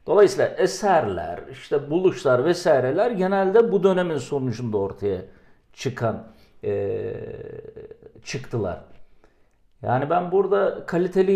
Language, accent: Turkish, native